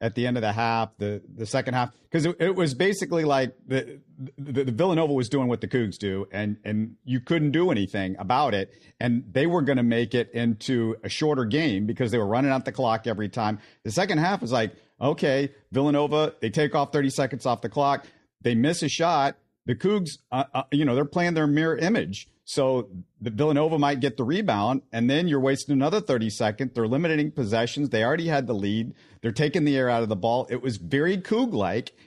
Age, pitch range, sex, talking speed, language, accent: 50-69, 115-145 Hz, male, 220 wpm, English, American